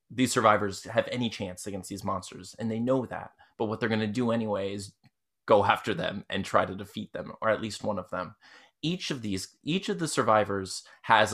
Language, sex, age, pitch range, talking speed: English, male, 20-39, 100-130 Hz, 220 wpm